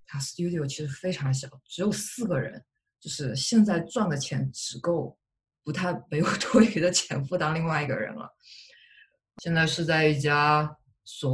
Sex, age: female, 20-39